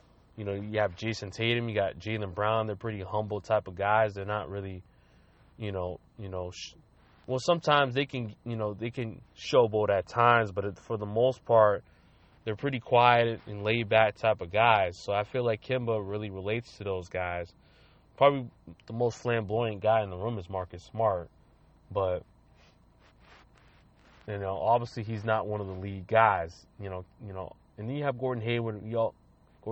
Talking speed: 190 wpm